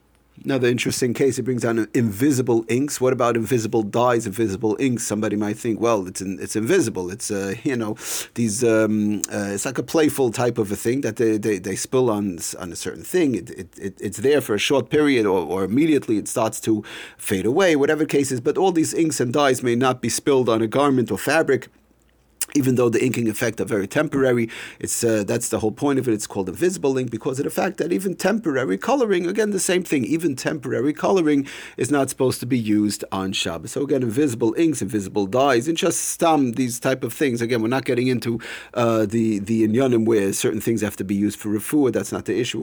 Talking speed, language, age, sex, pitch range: 225 wpm, English, 40-59, male, 110-135 Hz